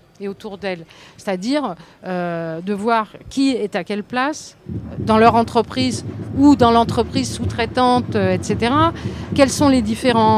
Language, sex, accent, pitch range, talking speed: French, female, French, 200-255 Hz, 135 wpm